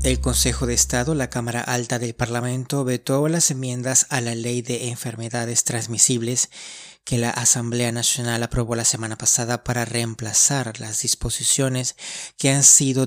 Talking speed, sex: 150 wpm, male